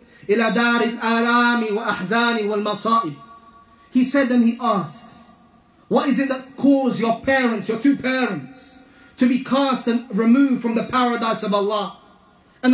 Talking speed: 140 wpm